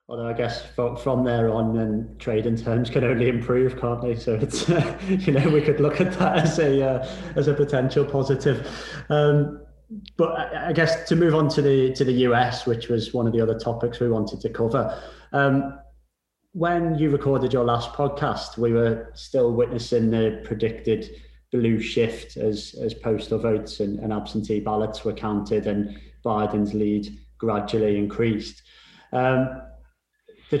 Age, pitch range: 30-49, 110-135 Hz